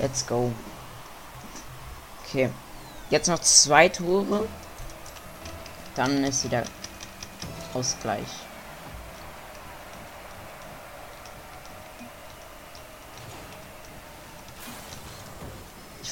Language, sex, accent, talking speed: German, female, German, 45 wpm